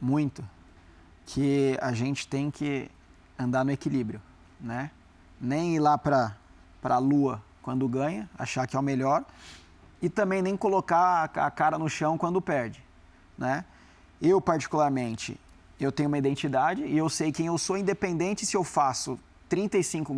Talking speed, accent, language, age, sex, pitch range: 150 wpm, Brazilian, Portuguese, 30-49, male, 130-185 Hz